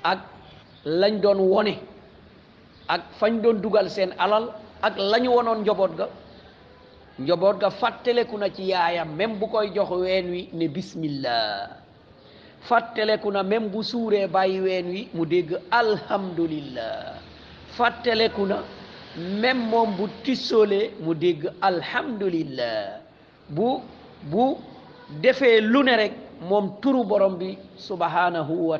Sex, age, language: male, 50-69, French